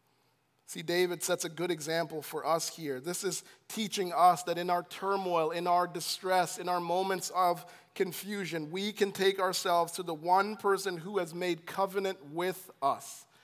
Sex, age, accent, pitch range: male, 40-59, American, 175-225 Hz